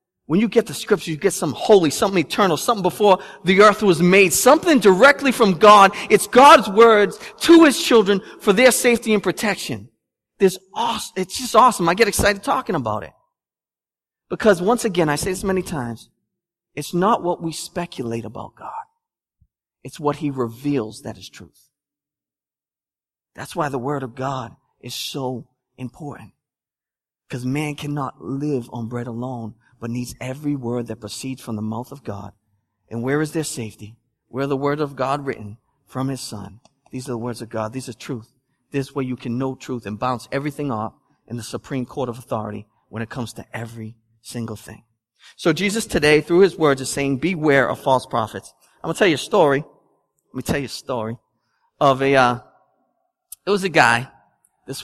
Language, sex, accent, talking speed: English, male, American, 190 wpm